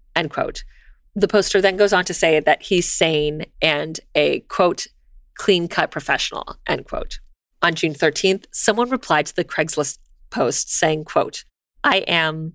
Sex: female